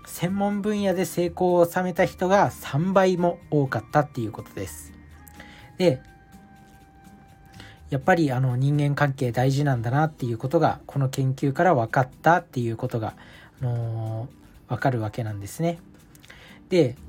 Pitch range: 125-170 Hz